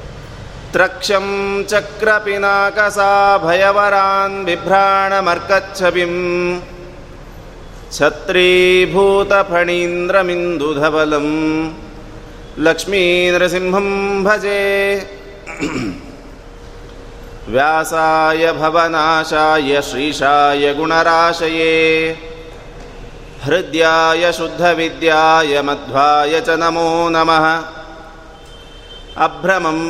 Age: 30-49